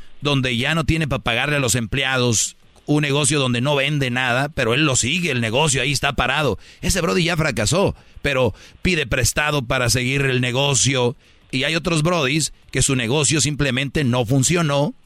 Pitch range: 120-150 Hz